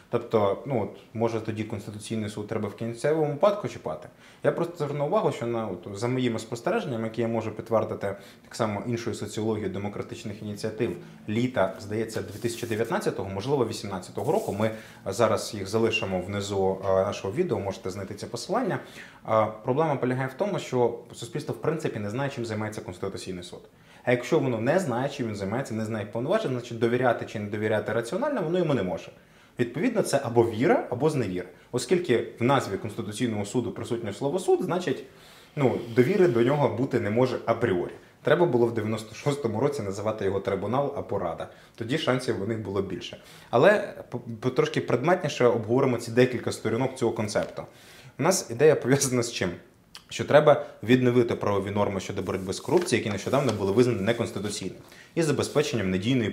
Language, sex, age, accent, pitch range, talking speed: Ukrainian, male, 20-39, native, 105-125 Hz, 165 wpm